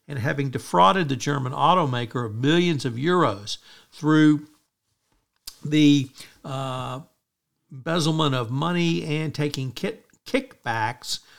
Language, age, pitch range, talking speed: English, 60-79, 125-155 Hz, 105 wpm